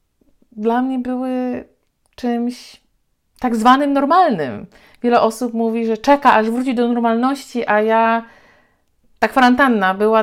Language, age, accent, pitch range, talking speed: Polish, 50-69, native, 185-245 Hz, 125 wpm